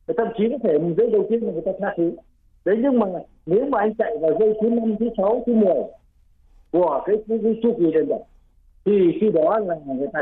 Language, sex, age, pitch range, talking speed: Vietnamese, male, 60-79, 170-230 Hz, 225 wpm